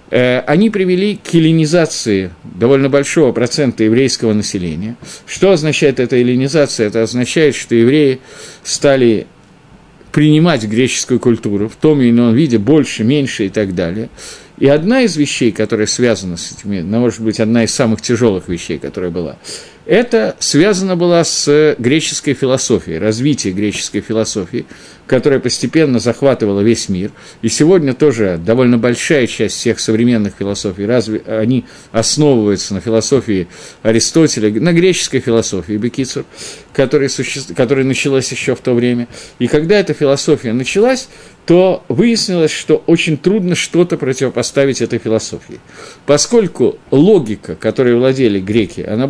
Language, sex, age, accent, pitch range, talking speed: Russian, male, 50-69, native, 110-150 Hz, 135 wpm